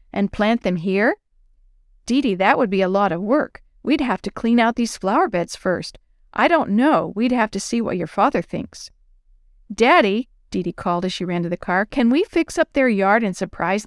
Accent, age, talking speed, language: American, 50-69, 210 wpm, English